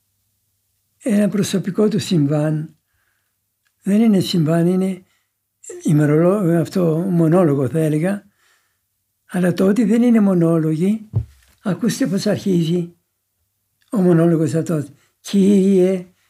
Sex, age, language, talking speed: male, 60-79, Greek, 90 wpm